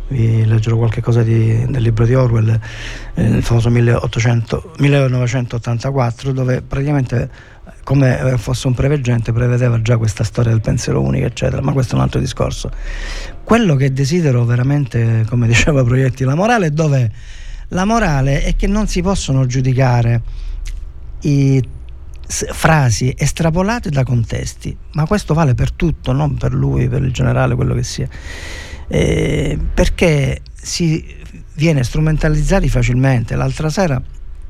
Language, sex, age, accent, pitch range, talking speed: Italian, male, 40-59, native, 115-140 Hz, 135 wpm